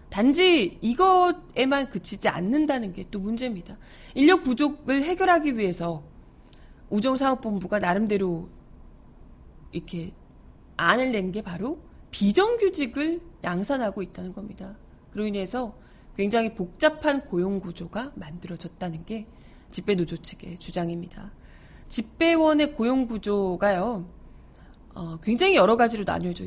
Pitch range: 185-295 Hz